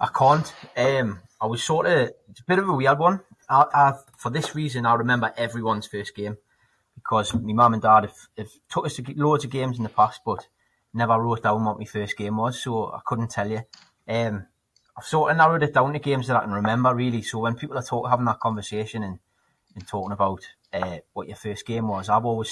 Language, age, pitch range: English, 20-39, 105-125 Hz